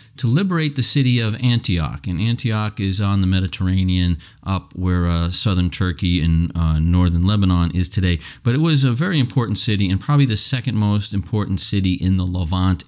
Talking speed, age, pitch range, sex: 185 wpm, 40-59, 95-135 Hz, male